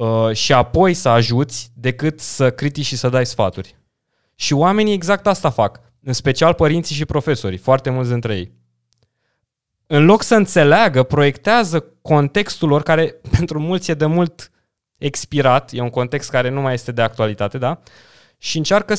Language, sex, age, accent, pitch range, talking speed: Romanian, male, 20-39, native, 120-175 Hz, 160 wpm